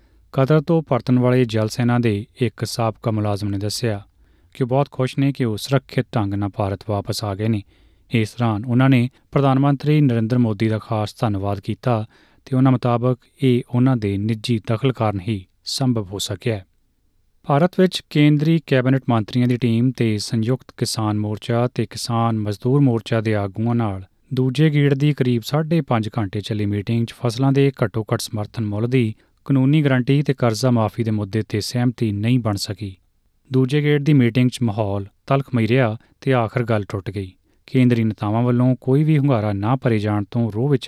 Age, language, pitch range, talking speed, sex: 30-49, Punjabi, 110-130 Hz, 175 wpm, male